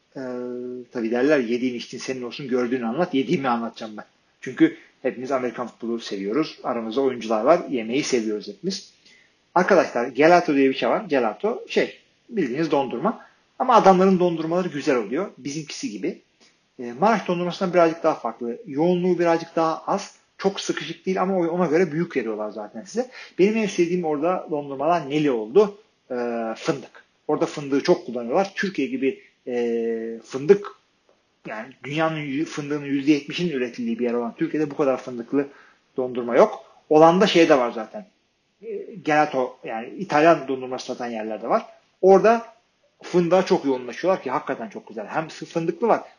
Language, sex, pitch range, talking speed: Turkish, male, 125-180 Hz, 150 wpm